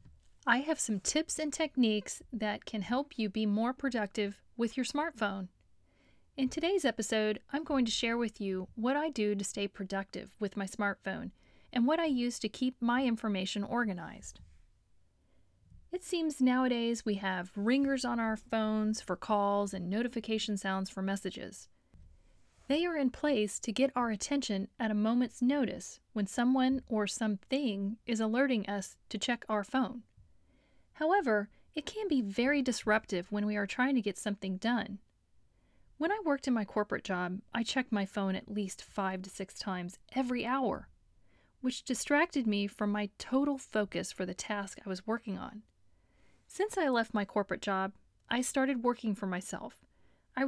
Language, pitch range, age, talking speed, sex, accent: English, 205-260 Hz, 40-59, 170 wpm, female, American